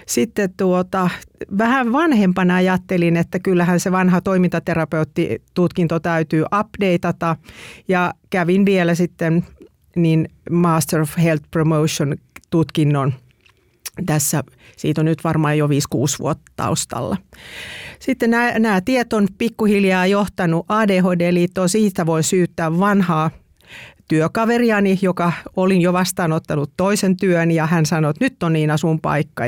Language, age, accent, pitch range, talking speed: Finnish, 40-59, native, 160-185 Hz, 115 wpm